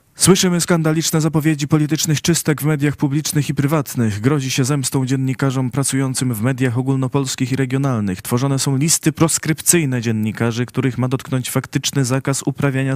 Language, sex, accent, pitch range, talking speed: Polish, male, native, 115-145 Hz, 145 wpm